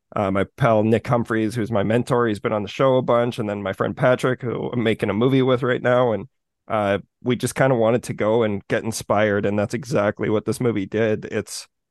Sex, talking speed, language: male, 240 wpm, English